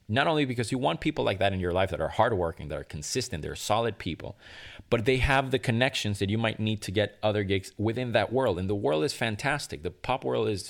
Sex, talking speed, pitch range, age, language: male, 250 wpm, 90-115 Hz, 20-39, English